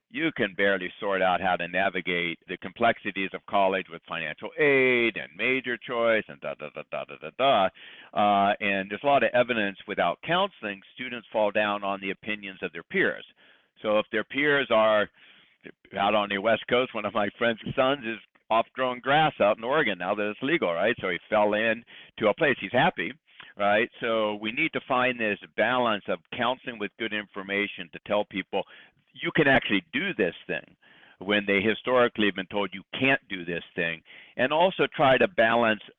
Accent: American